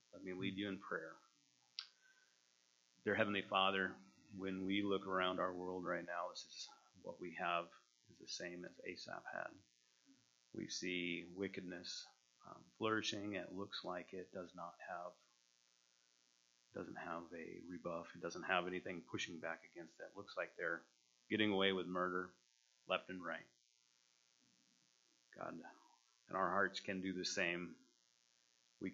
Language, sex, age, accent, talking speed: English, male, 30-49, American, 150 wpm